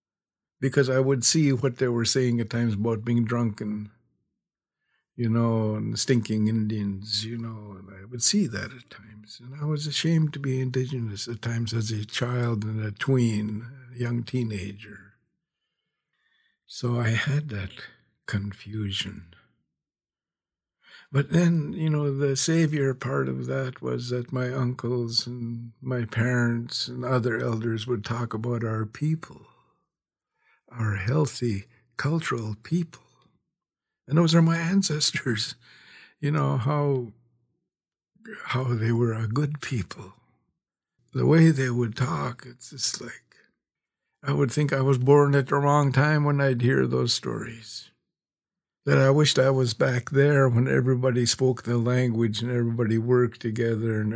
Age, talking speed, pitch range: 60-79, 145 wpm, 110-135 Hz